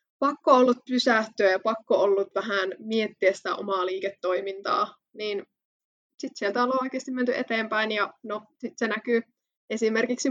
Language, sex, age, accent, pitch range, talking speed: Finnish, female, 20-39, native, 205-240 Hz, 140 wpm